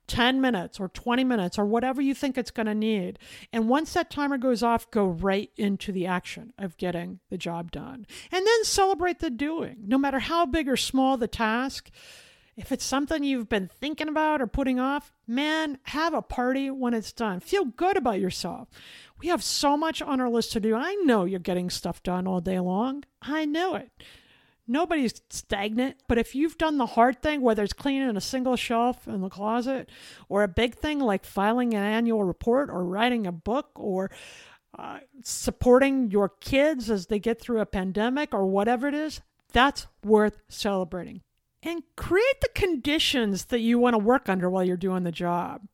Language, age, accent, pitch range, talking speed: English, 50-69, American, 205-280 Hz, 195 wpm